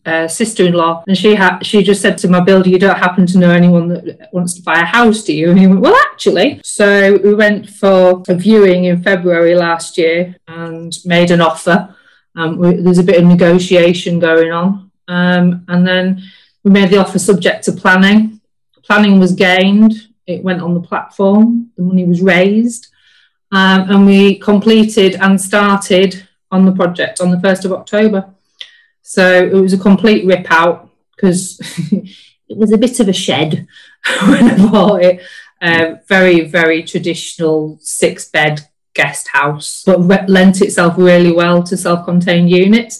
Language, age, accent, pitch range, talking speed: English, 30-49, British, 175-200 Hz, 175 wpm